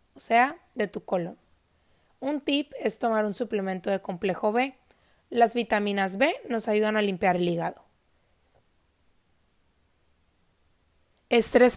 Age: 30-49